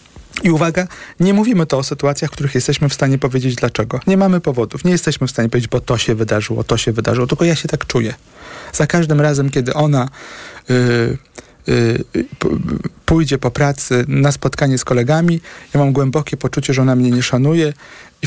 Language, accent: Polish, native